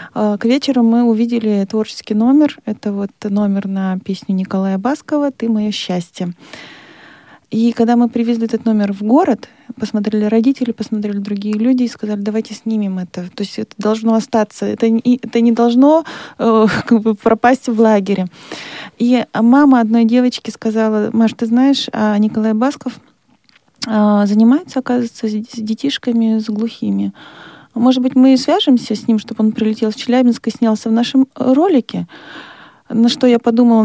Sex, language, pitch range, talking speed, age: female, Russian, 210-245 Hz, 150 wpm, 20-39